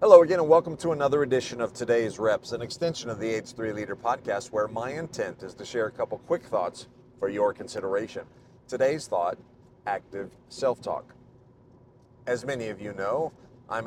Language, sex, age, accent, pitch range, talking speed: English, male, 40-59, American, 115-145 Hz, 175 wpm